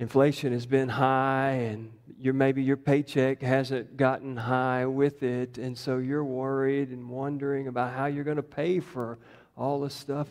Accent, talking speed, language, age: American, 170 wpm, English, 50-69